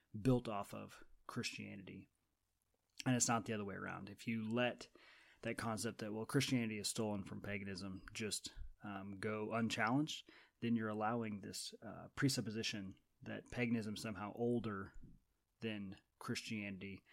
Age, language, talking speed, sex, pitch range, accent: 30-49, English, 140 wpm, male, 100-115 Hz, American